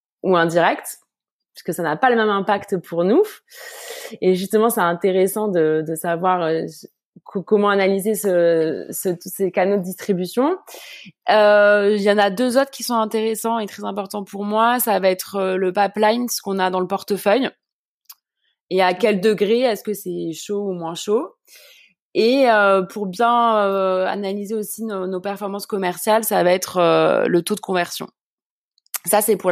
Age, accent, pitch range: 20-39, French, 180-215 Hz